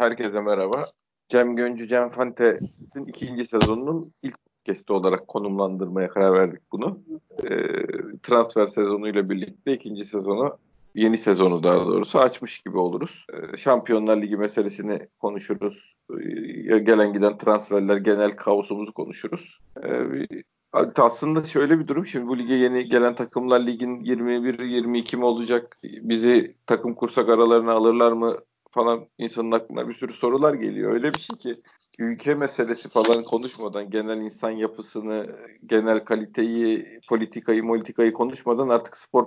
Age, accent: 40-59, native